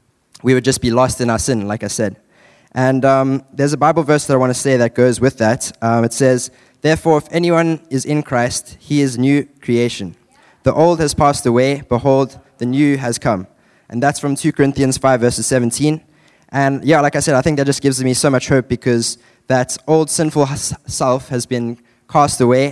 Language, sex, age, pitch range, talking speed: English, male, 20-39, 120-140 Hz, 210 wpm